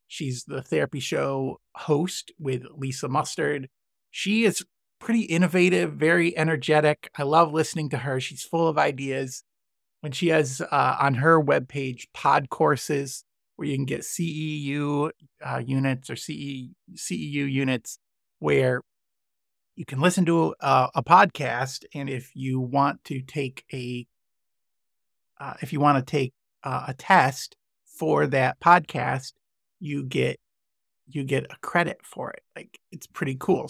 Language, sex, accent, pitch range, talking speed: English, male, American, 130-160 Hz, 145 wpm